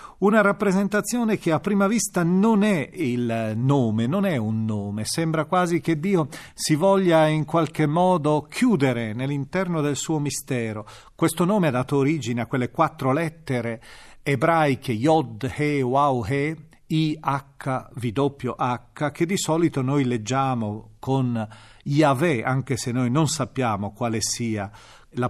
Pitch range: 120-160 Hz